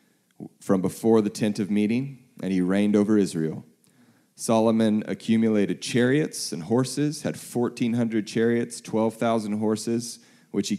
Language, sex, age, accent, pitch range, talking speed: English, male, 30-49, American, 95-120 Hz, 130 wpm